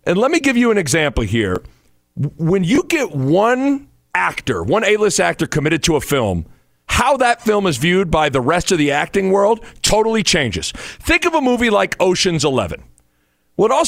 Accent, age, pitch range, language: American, 40-59, 150-215 Hz, English